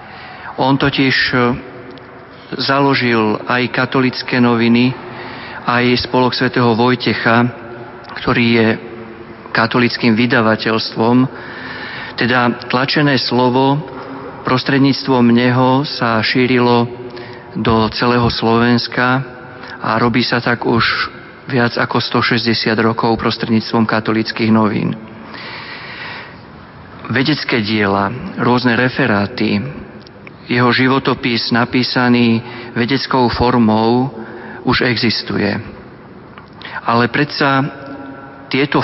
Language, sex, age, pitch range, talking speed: Slovak, male, 40-59, 115-130 Hz, 75 wpm